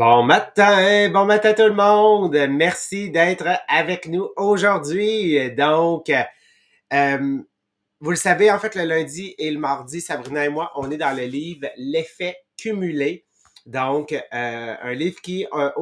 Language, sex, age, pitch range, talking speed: English, male, 30-49, 140-180 Hz, 165 wpm